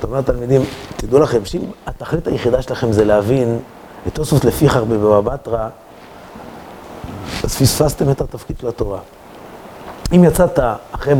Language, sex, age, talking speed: Hebrew, male, 30-49, 120 wpm